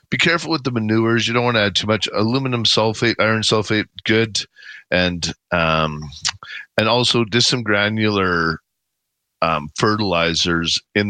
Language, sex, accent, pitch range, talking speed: English, male, American, 85-110 Hz, 145 wpm